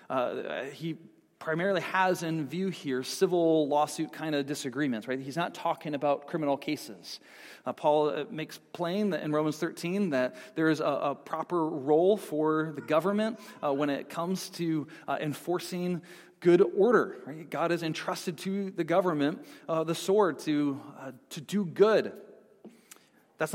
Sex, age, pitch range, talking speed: male, 40-59, 150-185 Hz, 160 wpm